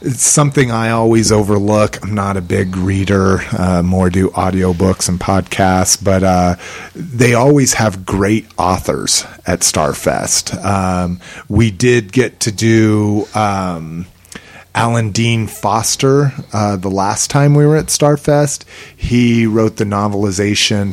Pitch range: 90-110 Hz